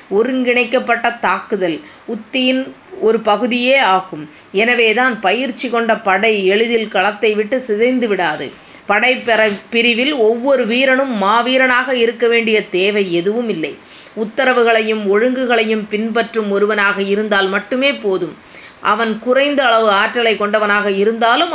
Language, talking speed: Tamil, 110 wpm